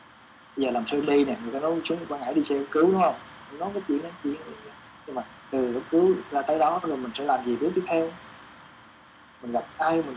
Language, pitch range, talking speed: Vietnamese, 110-165 Hz, 265 wpm